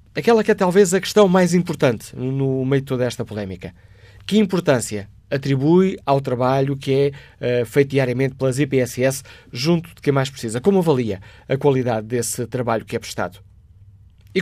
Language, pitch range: Portuguese, 120-155 Hz